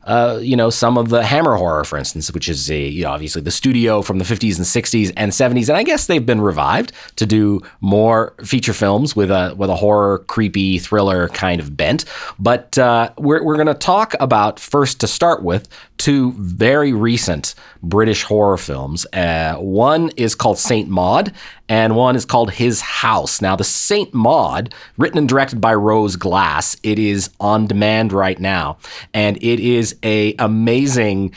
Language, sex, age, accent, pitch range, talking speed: English, male, 30-49, American, 100-125 Hz, 185 wpm